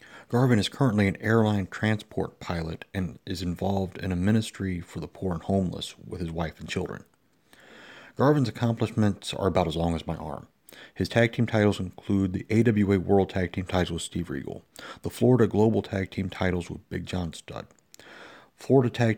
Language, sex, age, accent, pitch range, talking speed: English, male, 40-59, American, 90-110 Hz, 180 wpm